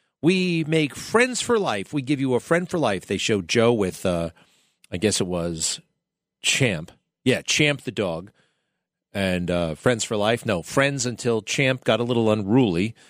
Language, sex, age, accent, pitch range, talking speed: English, male, 40-59, American, 100-135 Hz, 180 wpm